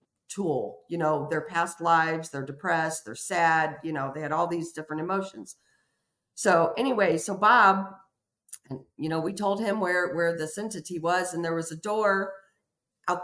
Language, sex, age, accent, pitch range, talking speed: English, female, 50-69, American, 160-190 Hz, 170 wpm